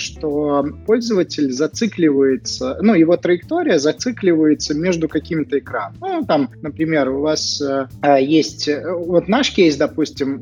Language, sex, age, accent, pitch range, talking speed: Russian, male, 20-39, native, 140-180 Hz, 125 wpm